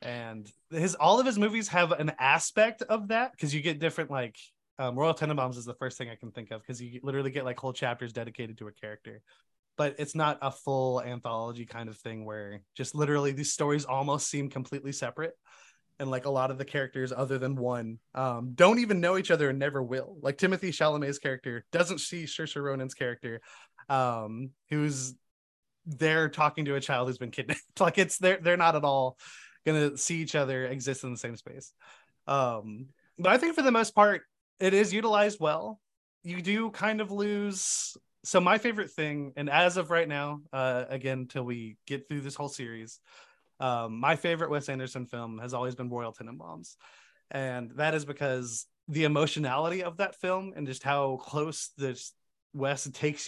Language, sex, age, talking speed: English, male, 20-39, 195 wpm